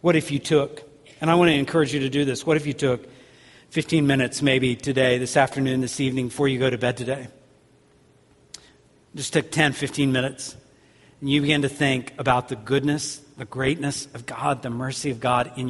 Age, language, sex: 50-69, English, male